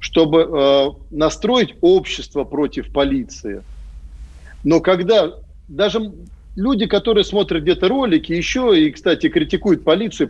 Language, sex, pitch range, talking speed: Russian, male, 130-185 Hz, 105 wpm